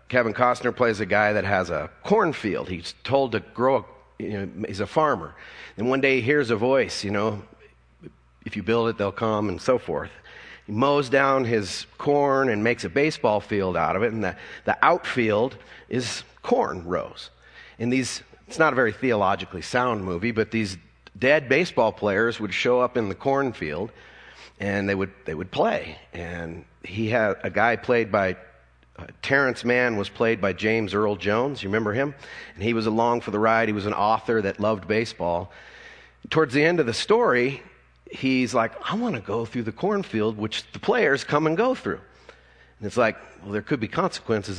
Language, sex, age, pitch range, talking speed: English, male, 40-59, 100-125 Hz, 195 wpm